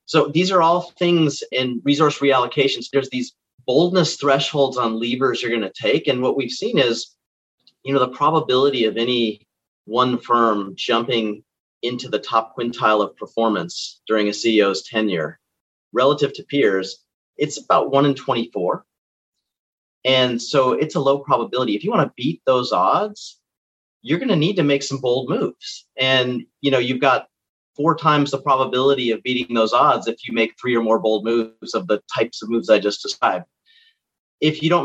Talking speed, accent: 180 wpm, American